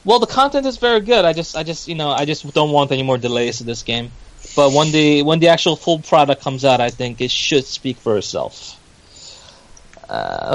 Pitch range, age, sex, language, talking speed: 125-155 Hz, 20-39, male, English, 230 wpm